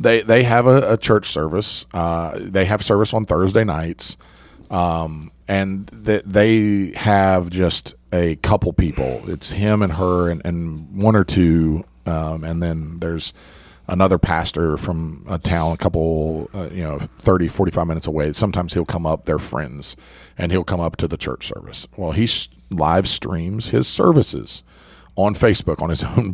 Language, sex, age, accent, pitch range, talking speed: English, male, 40-59, American, 80-105 Hz, 170 wpm